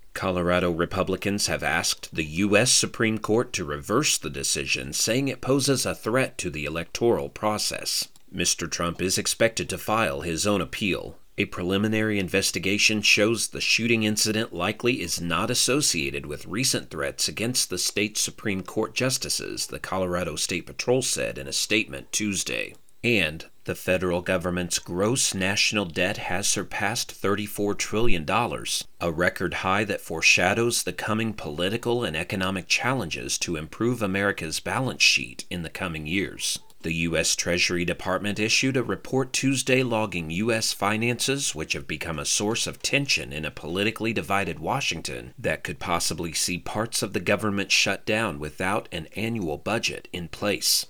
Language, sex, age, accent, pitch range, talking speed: English, male, 40-59, American, 90-115 Hz, 150 wpm